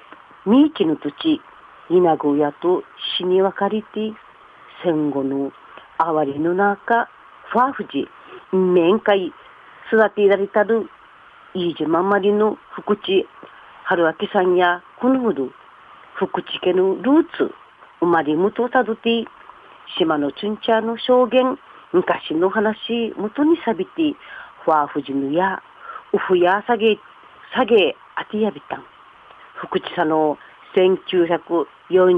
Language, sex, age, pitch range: Japanese, female, 50-69, 170-220 Hz